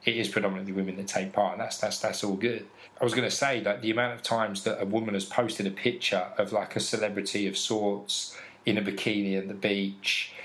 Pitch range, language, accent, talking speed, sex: 95-110 Hz, English, British, 240 wpm, male